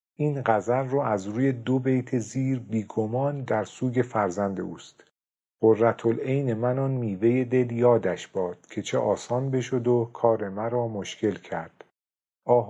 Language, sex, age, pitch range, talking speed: Persian, male, 50-69, 100-125 Hz, 145 wpm